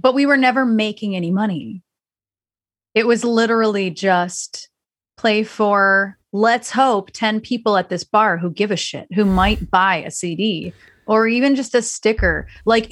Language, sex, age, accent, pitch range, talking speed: English, female, 30-49, American, 180-225 Hz, 165 wpm